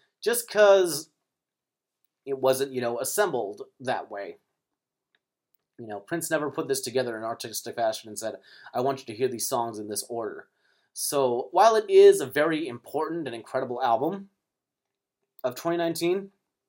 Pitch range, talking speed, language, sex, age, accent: 120-170 Hz, 155 wpm, English, male, 30-49, American